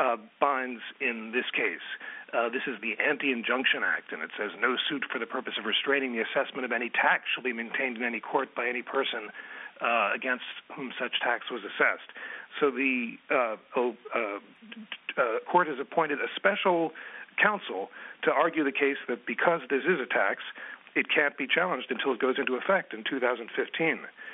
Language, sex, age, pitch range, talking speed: English, male, 40-59, 130-180 Hz, 180 wpm